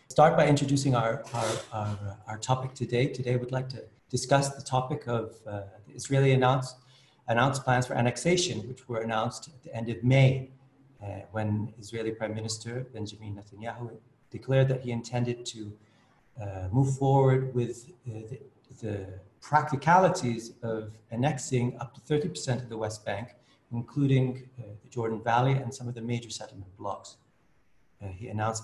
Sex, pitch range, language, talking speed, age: male, 110-130 Hz, English, 160 wpm, 40-59